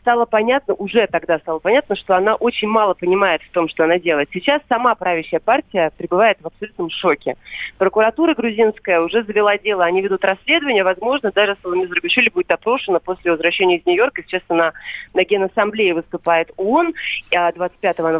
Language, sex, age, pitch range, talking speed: Russian, female, 30-49, 180-235 Hz, 170 wpm